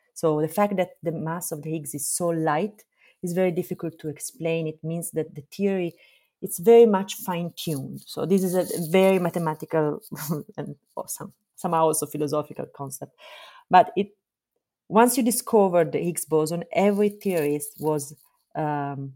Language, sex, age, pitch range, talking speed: English, female, 30-49, 145-185 Hz, 150 wpm